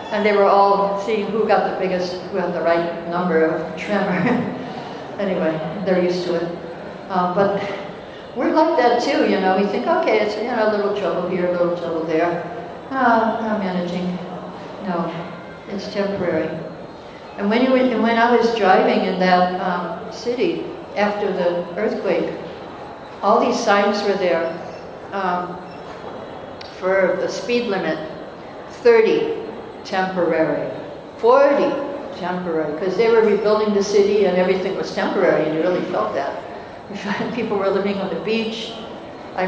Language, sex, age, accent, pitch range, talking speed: English, female, 60-79, American, 175-215 Hz, 145 wpm